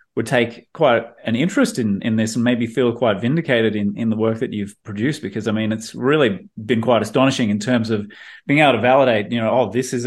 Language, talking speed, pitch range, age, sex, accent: English, 240 wpm, 115-135 Hz, 30-49, male, Australian